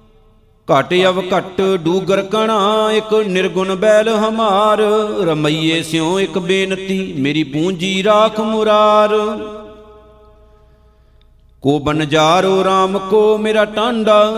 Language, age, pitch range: Punjabi, 50-69, 185-215 Hz